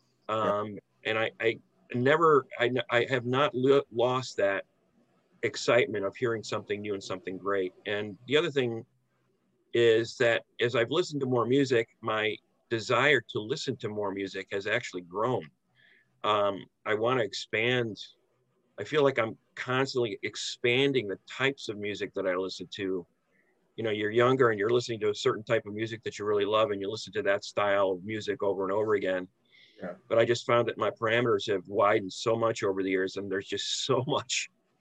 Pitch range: 100-130 Hz